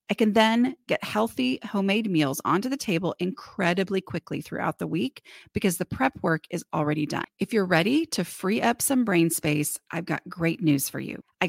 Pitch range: 165-235 Hz